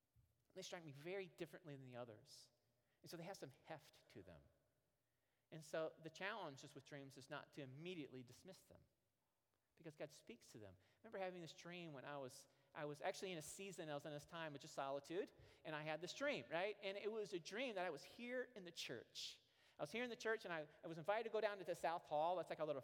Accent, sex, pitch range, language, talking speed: American, male, 140-190 Hz, English, 250 wpm